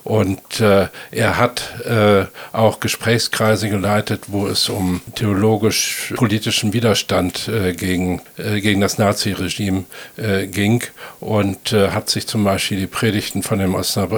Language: German